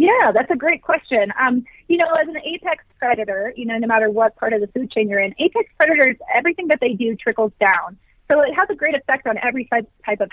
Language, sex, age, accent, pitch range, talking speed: English, female, 30-49, American, 220-285 Hz, 245 wpm